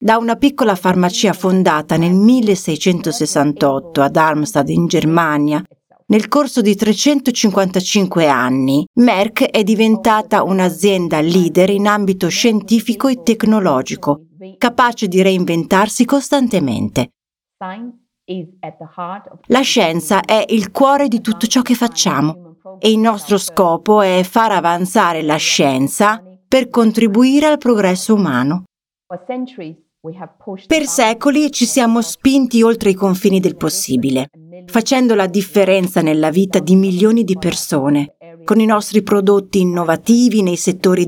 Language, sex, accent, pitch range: Italian, female, native, 165-225 Hz